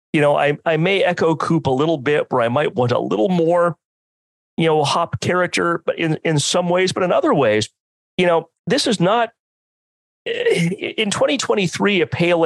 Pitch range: 125-175 Hz